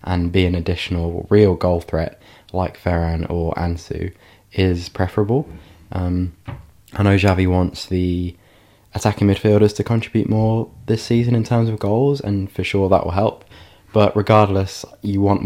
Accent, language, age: British, English, 20-39